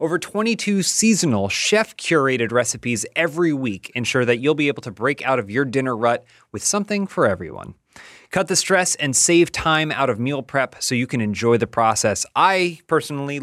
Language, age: English, 30-49